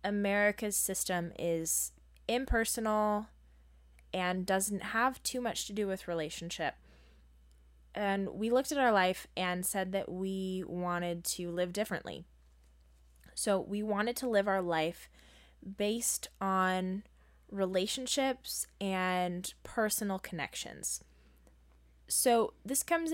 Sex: female